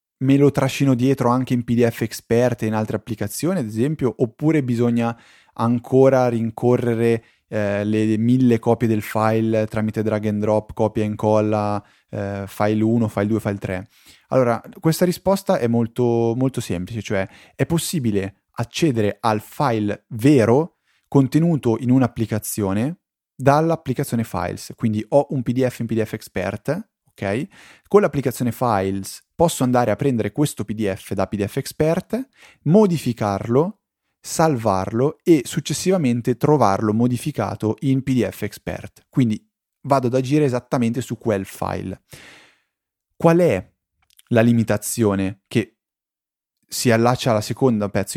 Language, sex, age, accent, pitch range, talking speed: Italian, male, 20-39, native, 105-135 Hz, 130 wpm